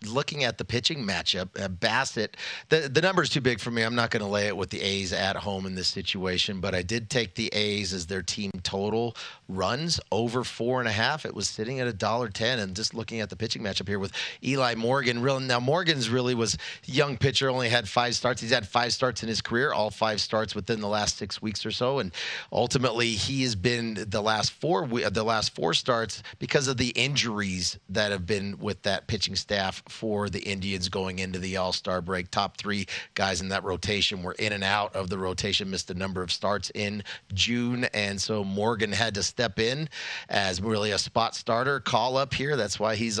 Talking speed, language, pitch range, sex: 220 wpm, English, 100-125 Hz, male